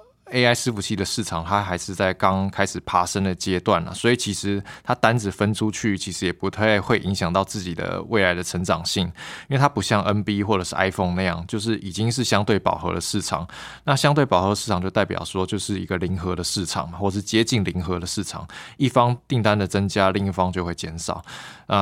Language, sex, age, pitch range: Chinese, male, 20-39, 90-110 Hz